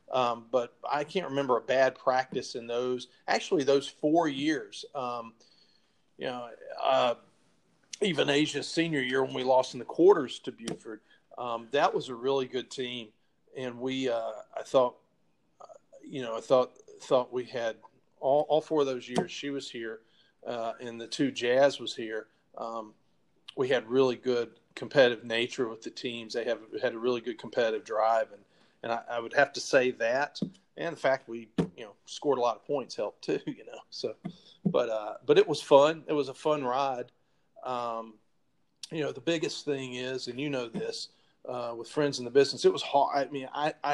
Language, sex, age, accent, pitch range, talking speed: English, male, 40-59, American, 120-145 Hz, 195 wpm